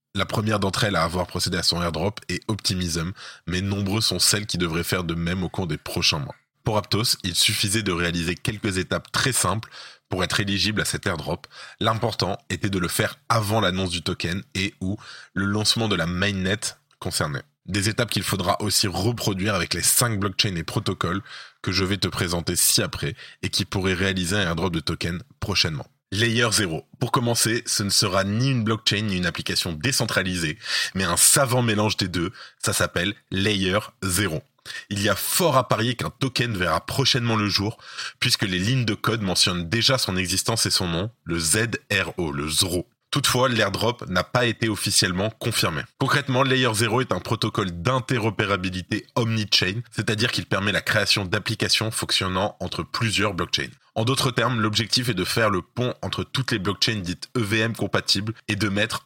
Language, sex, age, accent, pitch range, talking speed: French, male, 20-39, French, 95-115 Hz, 185 wpm